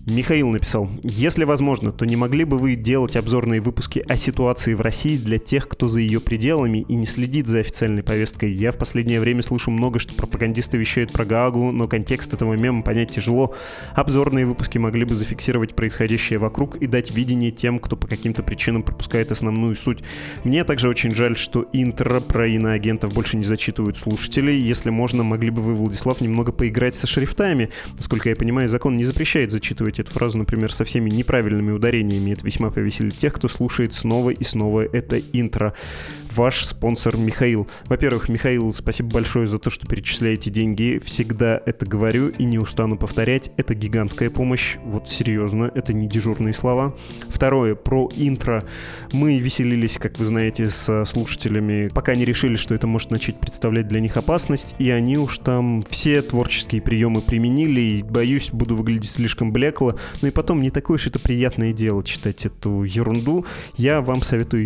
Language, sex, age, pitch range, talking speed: Russian, male, 20-39, 110-125 Hz, 175 wpm